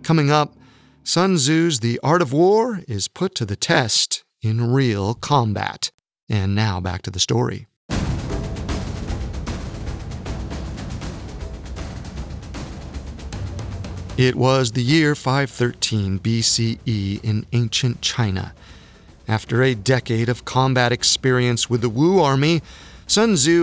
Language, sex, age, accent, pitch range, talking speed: English, male, 40-59, American, 105-145 Hz, 110 wpm